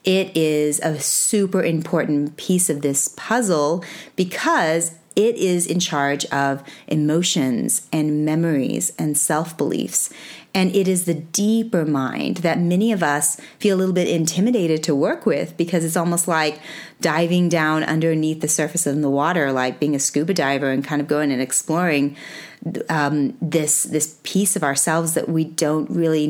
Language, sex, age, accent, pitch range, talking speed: English, female, 30-49, American, 150-190 Hz, 160 wpm